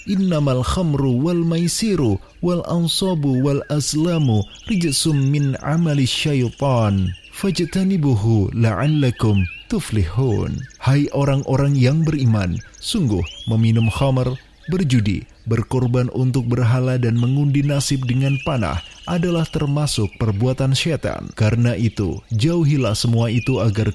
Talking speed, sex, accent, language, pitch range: 85 wpm, male, native, Indonesian, 110-145 Hz